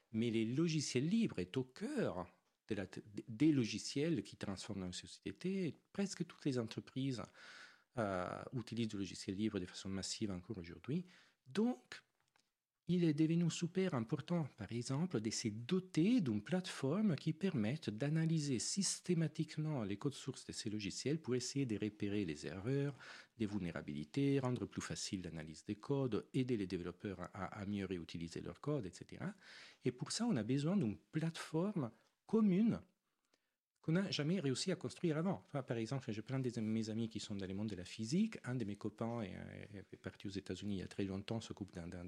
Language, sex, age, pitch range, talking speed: French, male, 40-59, 100-155 Hz, 180 wpm